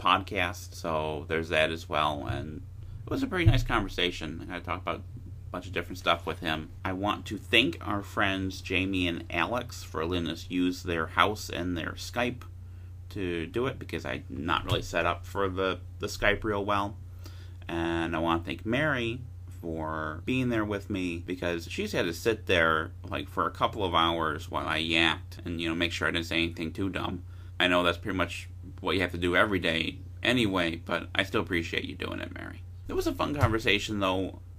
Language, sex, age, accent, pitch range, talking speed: English, male, 30-49, American, 85-95 Hz, 210 wpm